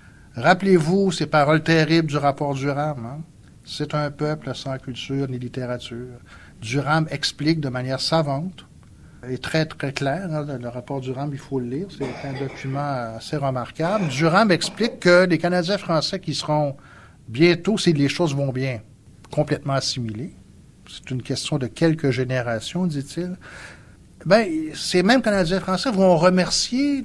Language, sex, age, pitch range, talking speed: French, male, 60-79, 125-175 Hz, 150 wpm